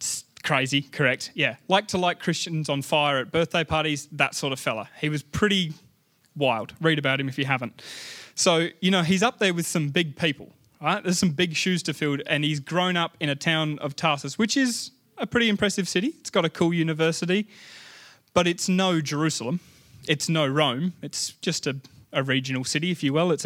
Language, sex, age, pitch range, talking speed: English, male, 20-39, 140-175 Hz, 205 wpm